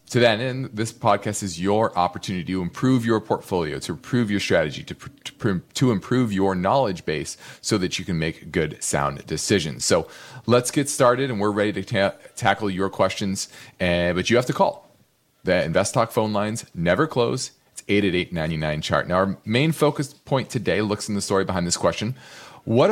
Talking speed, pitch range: 195 wpm, 95-125 Hz